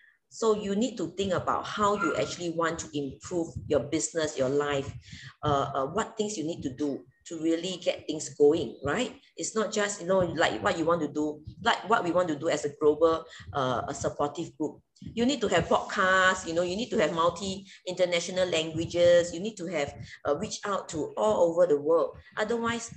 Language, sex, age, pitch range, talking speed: English, female, 20-39, 150-205 Hz, 210 wpm